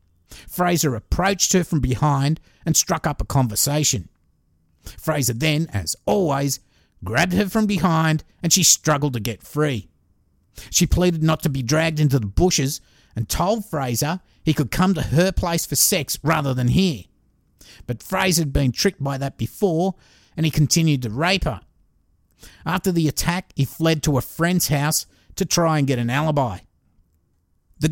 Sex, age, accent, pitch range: male, 50-69, Australian, 125-180 Hz